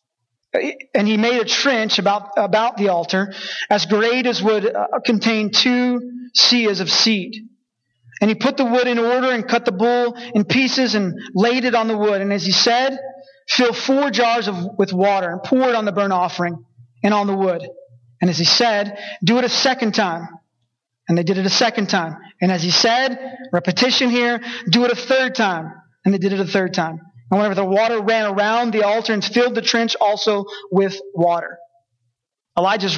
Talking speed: 200 wpm